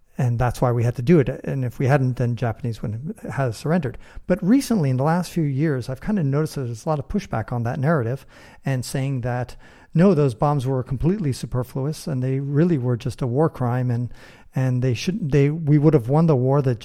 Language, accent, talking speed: English, American, 240 wpm